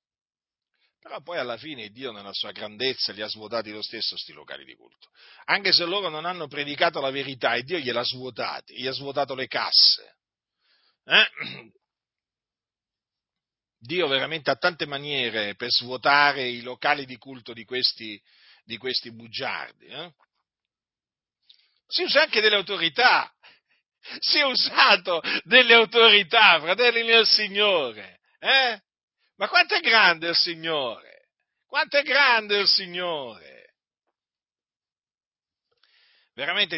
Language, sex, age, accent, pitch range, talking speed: Italian, male, 50-69, native, 140-230 Hz, 125 wpm